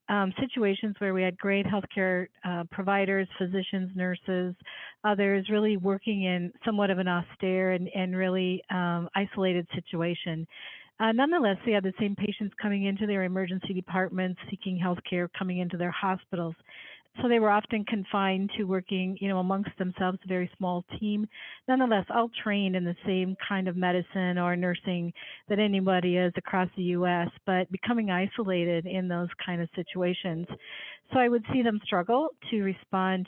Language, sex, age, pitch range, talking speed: English, female, 50-69, 180-200 Hz, 165 wpm